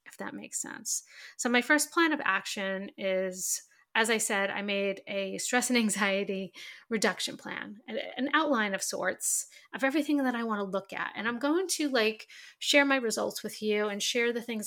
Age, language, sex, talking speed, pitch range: 30-49, English, female, 195 wpm, 200-255 Hz